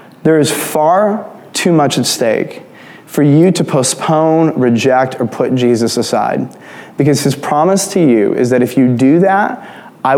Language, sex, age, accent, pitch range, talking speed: English, male, 20-39, American, 125-155 Hz, 165 wpm